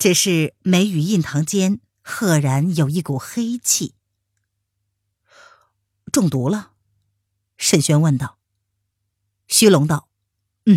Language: Chinese